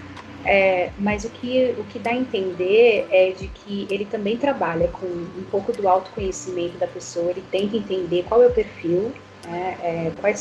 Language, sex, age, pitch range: Portuguese, female, 30-49, 175-225 Hz